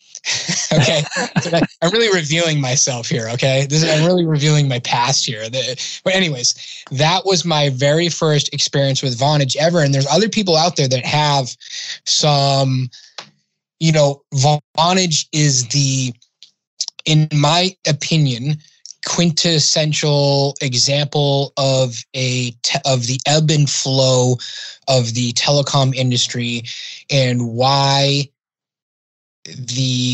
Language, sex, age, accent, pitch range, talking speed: English, male, 20-39, American, 125-145 Hz, 120 wpm